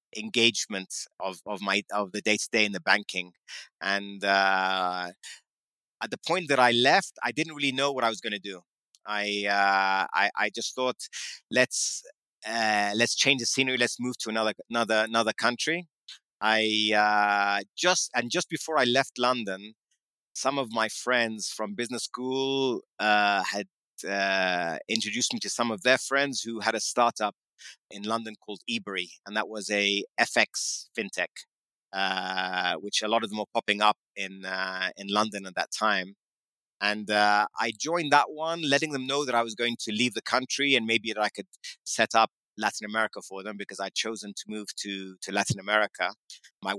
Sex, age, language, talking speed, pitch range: male, 30-49, English, 180 wpm, 100-120 Hz